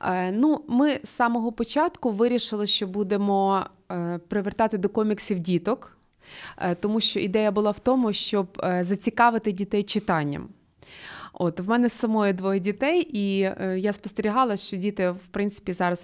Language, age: Ukrainian, 20-39